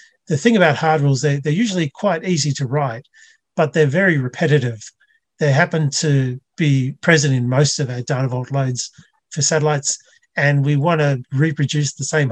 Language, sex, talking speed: English, male, 180 wpm